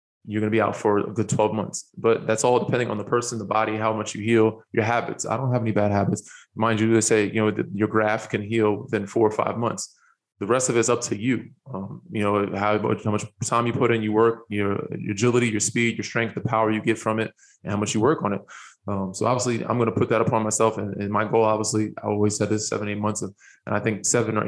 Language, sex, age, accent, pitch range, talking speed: English, male, 20-39, American, 105-120 Hz, 280 wpm